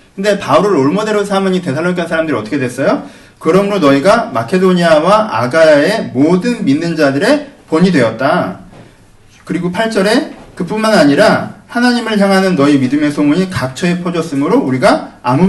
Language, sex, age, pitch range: Korean, male, 40-59, 155-220 Hz